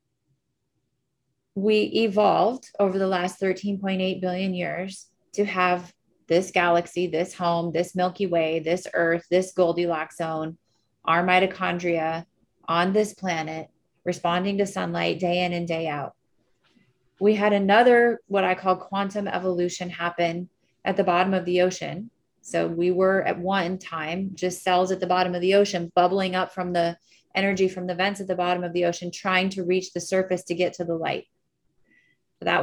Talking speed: 165 wpm